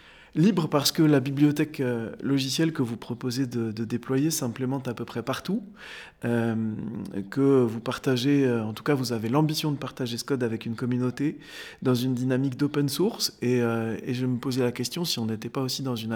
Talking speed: 200 wpm